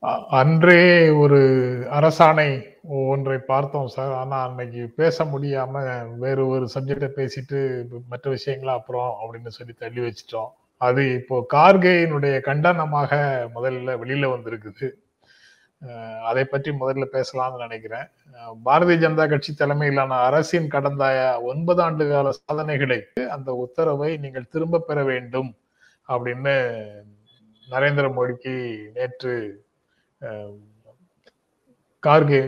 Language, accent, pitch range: Tamil, native, 125-150 Hz